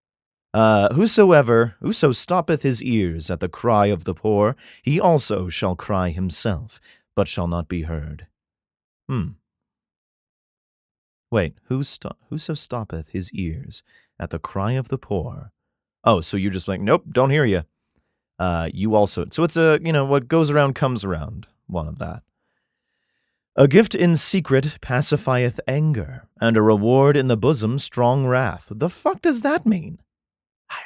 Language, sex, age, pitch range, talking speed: English, male, 30-49, 100-160 Hz, 160 wpm